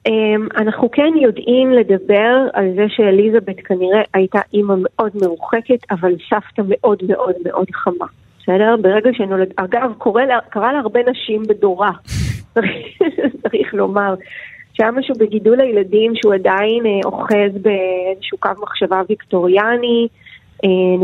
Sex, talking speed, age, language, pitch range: female, 130 wpm, 30-49, Hebrew, 190-230 Hz